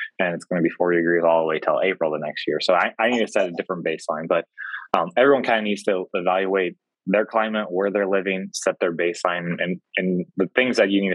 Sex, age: male, 20-39